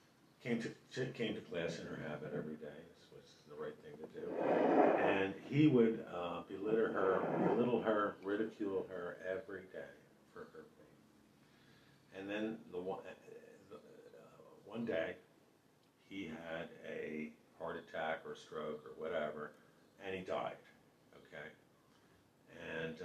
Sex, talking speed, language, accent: male, 140 wpm, English, American